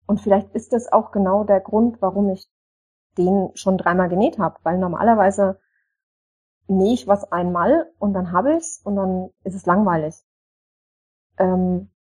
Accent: German